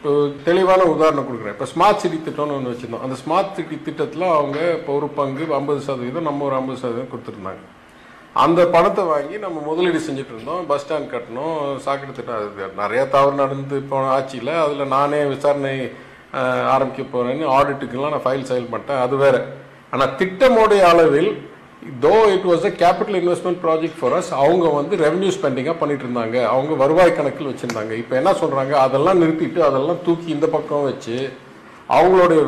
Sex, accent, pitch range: male, Indian, 135-175 Hz